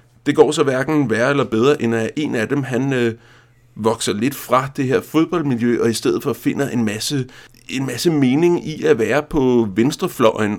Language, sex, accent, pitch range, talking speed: Danish, male, native, 115-140 Hz, 200 wpm